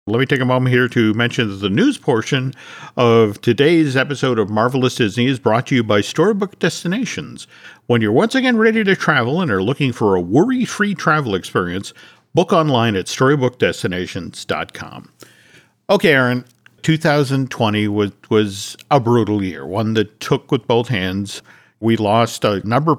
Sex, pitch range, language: male, 110-155 Hz, English